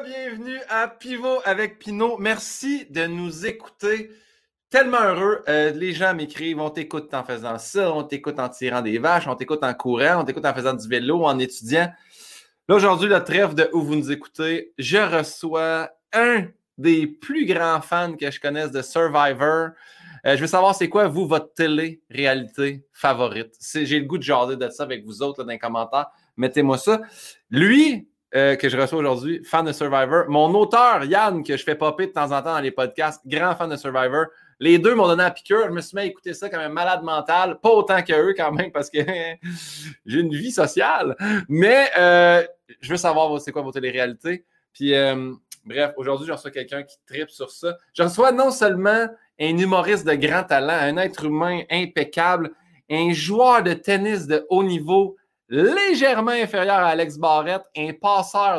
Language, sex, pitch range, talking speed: French, male, 145-200 Hz, 190 wpm